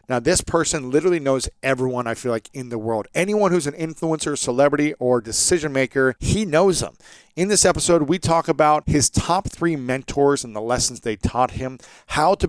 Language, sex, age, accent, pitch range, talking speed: English, male, 40-59, American, 125-160 Hz, 195 wpm